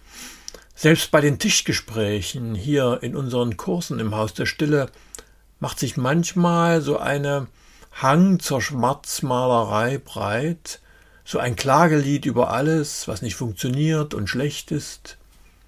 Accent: German